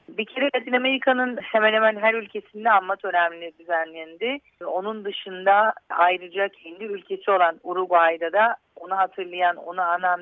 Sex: female